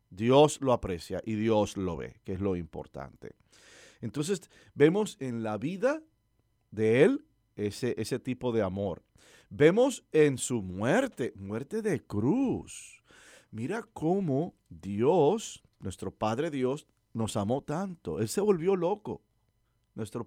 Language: English